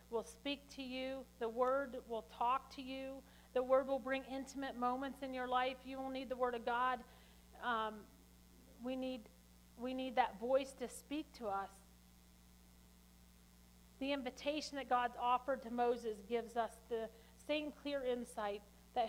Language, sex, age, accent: English, female, 40-59, American